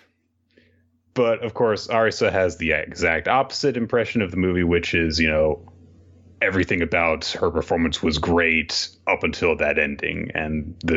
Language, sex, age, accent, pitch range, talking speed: English, male, 30-49, American, 80-95 Hz, 155 wpm